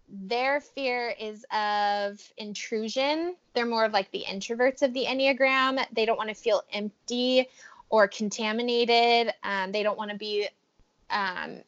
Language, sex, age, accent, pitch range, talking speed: English, female, 10-29, American, 205-245 Hz, 150 wpm